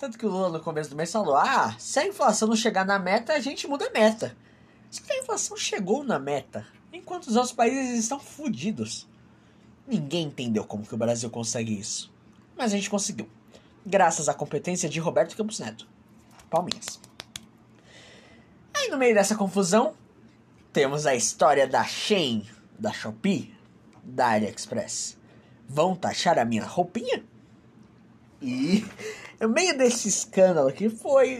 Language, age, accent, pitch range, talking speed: Portuguese, 20-39, Brazilian, 130-220 Hz, 155 wpm